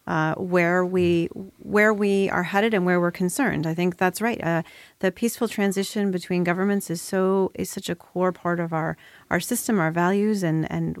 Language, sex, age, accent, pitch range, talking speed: English, female, 30-49, American, 175-225 Hz, 195 wpm